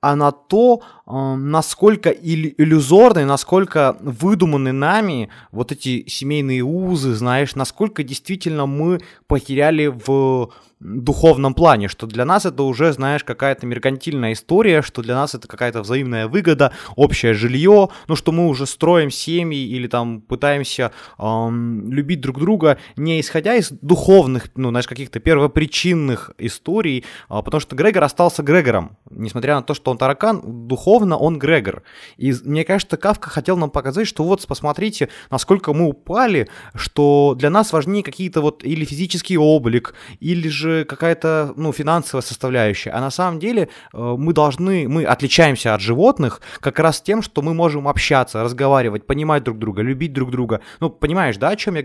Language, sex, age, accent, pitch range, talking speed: Ukrainian, male, 20-39, native, 130-165 Hz, 155 wpm